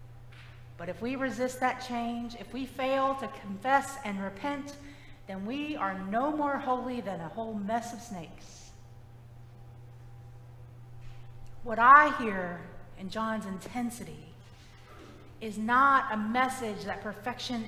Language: English